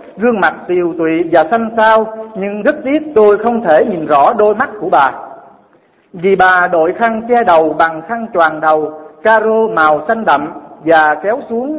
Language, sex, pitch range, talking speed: Vietnamese, male, 165-225 Hz, 185 wpm